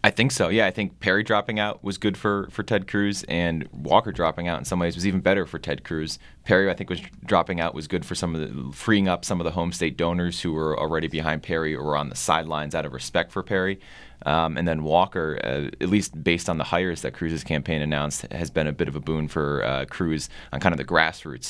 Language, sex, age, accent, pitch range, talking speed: English, male, 20-39, American, 75-90 Hz, 260 wpm